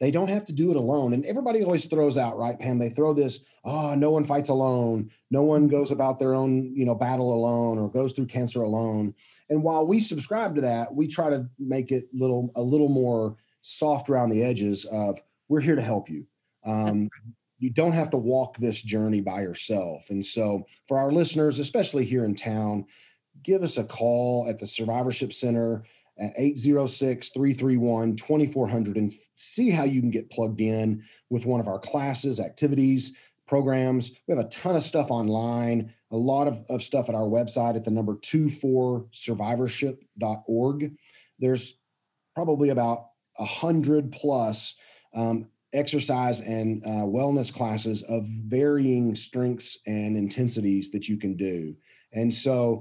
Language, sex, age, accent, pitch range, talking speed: English, male, 40-59, American, 115-140 Hz, 165 wpm